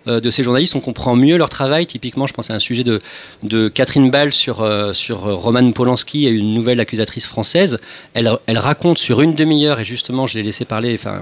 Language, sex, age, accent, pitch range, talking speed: French, male, 40-59, French, 110-150 Hz, 220 wpm